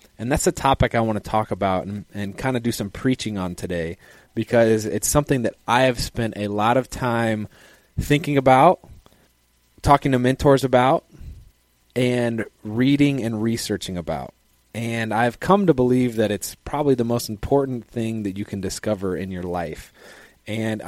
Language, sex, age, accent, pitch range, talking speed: English, male, 30-49, American, 100-125 Hz, 170 wpm